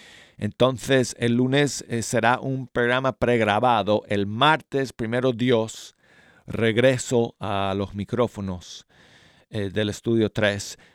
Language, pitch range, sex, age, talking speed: Spanish, 100-120 Hz, male, 40-59, 110 wpm